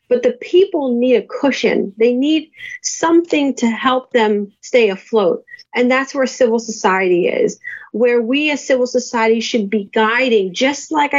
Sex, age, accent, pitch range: female, 30-49, American, 225-285 Hz